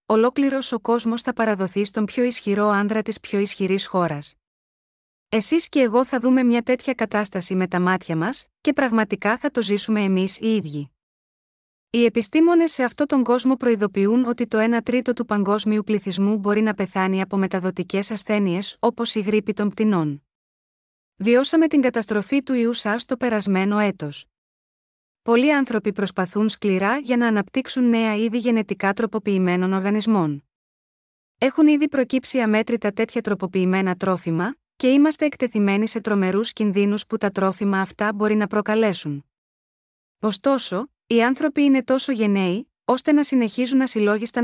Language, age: Greek, 30-49